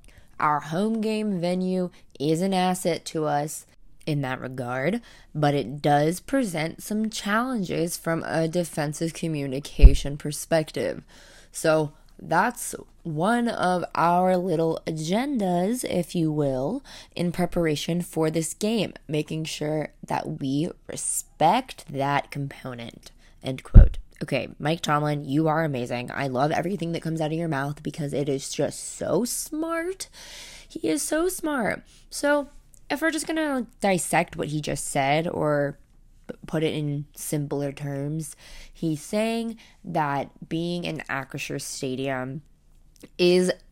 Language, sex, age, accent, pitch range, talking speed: English, female, 20-39, American, 145-180 Hz, 135 wpm